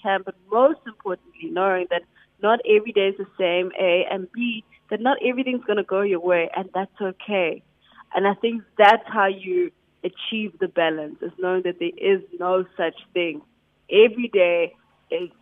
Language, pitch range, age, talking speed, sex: English, 175-215 Hz, 20-39, 180 wpm, female